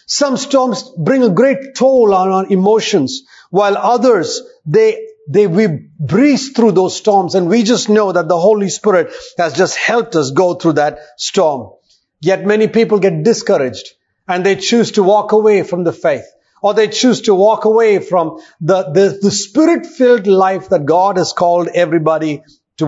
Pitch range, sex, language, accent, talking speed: 180-245 Hz, male, English, Indian, 175 wpm